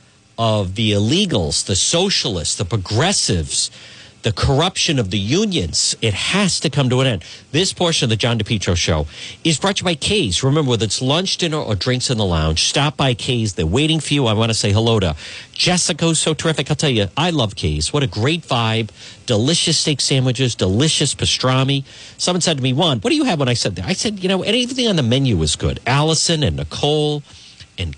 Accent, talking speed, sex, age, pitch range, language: American, 215 wpm, male, 50-69, 105-155 Hz, English